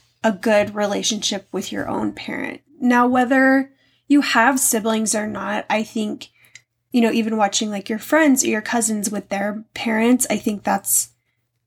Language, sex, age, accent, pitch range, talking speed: English, female, 10-29, American, 205-250 Hz, 165 wpm